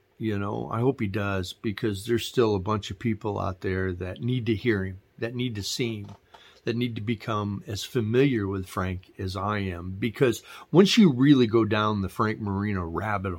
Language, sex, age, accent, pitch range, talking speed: English, male, 40-59, American, 100-125 Hz, 205 wpm